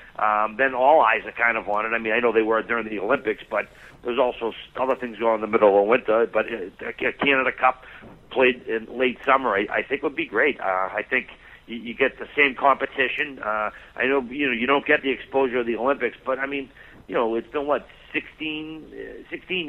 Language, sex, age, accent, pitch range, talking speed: English, male, 50-69, American, 115-140 Hz, 235 wpm